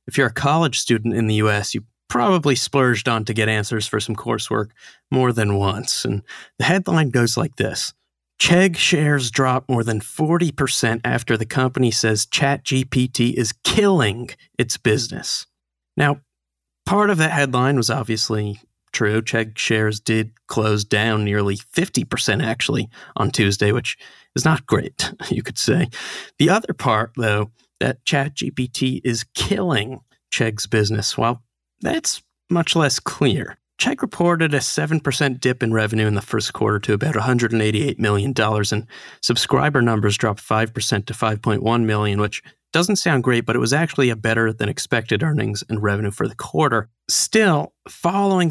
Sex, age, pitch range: male, 30-49, 110-140 Hz